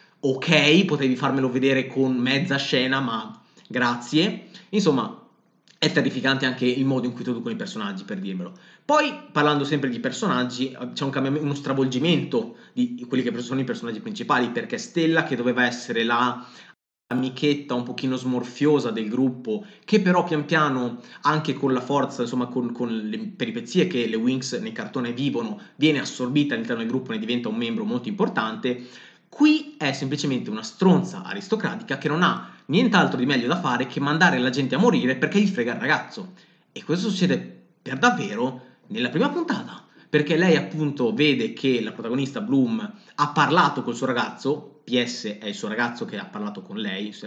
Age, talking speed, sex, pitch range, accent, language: 30-49, 175 wpm, male, 125-195 Hz, native, Italian